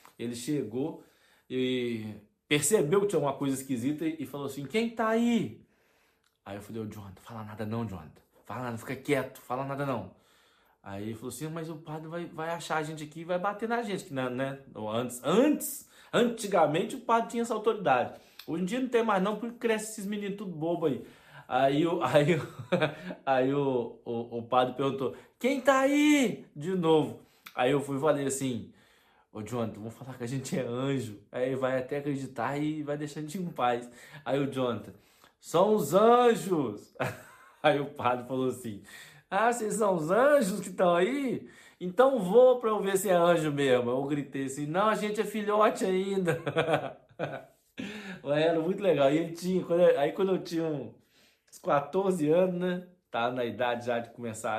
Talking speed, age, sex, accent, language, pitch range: 185 wpm, 20-39, male, Brazilian, Portuguese, 125-195 Hz